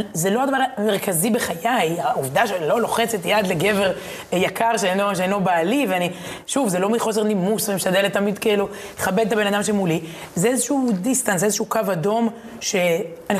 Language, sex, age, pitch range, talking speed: Hebrew, female, 20-39, 180-225 Hz, 170 wpm